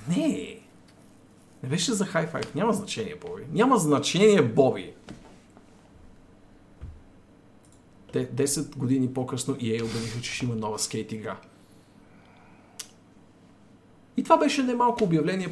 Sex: male